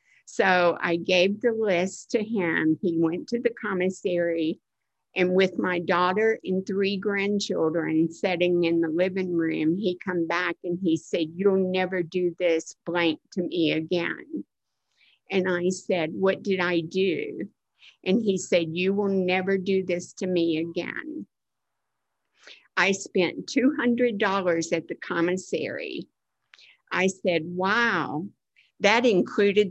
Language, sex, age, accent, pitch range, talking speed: English, female, 50-69, American, 175-210 Hz, 135 wpm